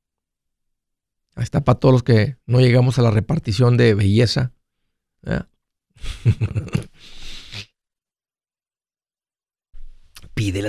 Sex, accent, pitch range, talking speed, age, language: male, Mexican, 110-135 Hz, 80 wpm, 50-69, Spanish